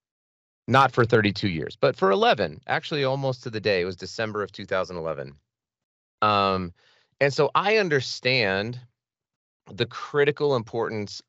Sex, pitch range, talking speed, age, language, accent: male, 95-135 Hz, 135 wpm, 30-49, English, American